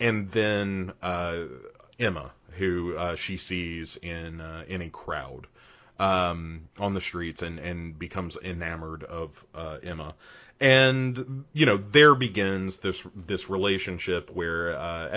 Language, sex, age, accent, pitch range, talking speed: English, male, 30-49, American, 90-120 Hz, 135 wpm